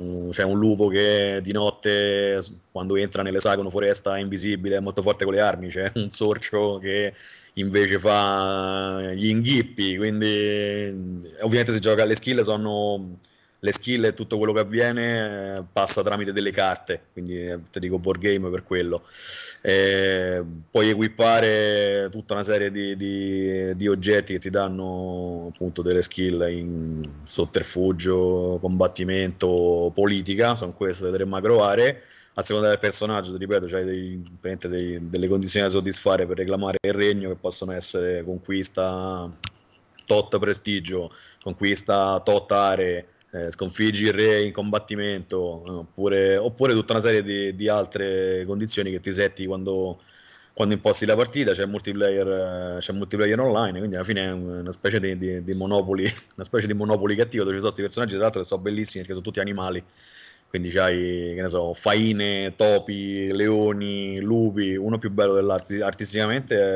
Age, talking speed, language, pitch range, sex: 30-49, 150 wpm, Italian, 95-105 Hz, male